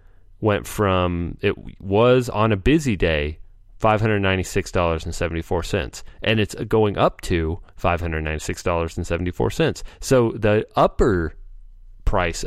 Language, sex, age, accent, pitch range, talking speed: English, male, 30-49, American, 85-110 Hz, 90 wpm